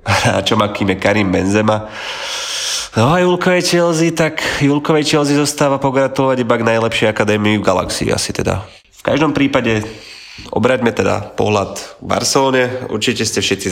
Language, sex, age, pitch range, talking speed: Slovak, male, 30-49, 95-115 Hz, 150 wpm